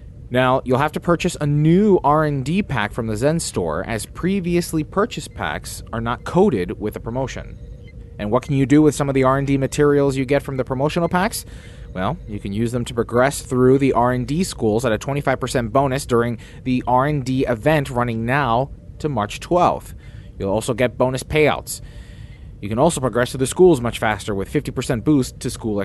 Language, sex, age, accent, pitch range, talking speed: English, male, 30-49, American, 115-140 Hz, 195 wpm